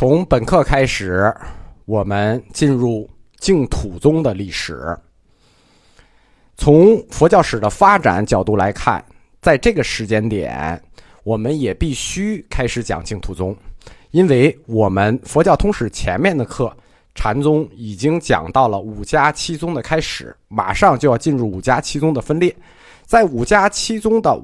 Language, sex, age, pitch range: Chinese, male, 50-69, 110-155 Hz